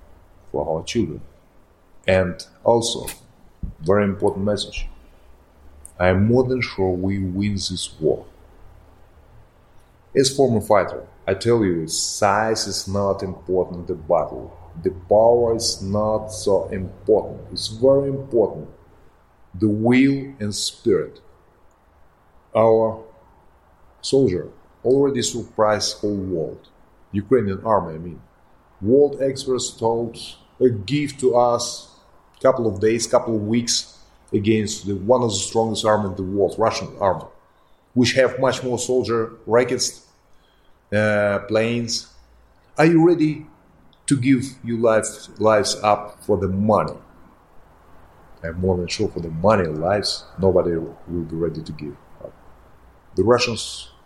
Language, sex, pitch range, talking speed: English, male, 90-115 Hz, 130 wpm